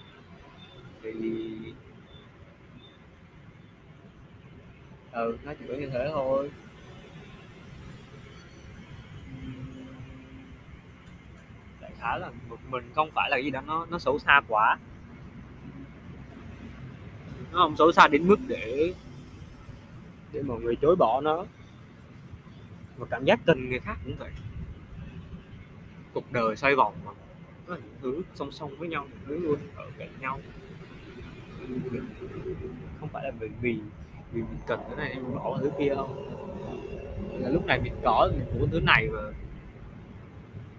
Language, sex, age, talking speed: Vietnamese, male, 20-39, 120 wpm